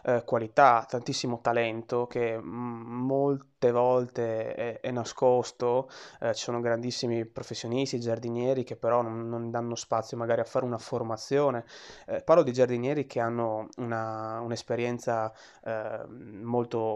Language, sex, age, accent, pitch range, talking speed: Italian, male, 20-39, native, 115-125 Hz, 125 wpm